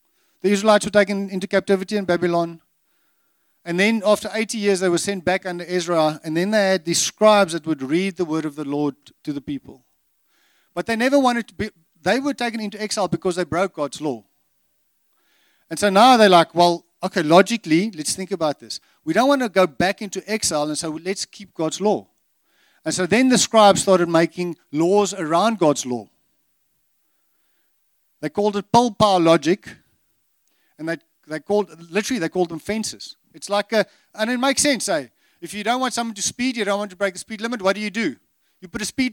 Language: English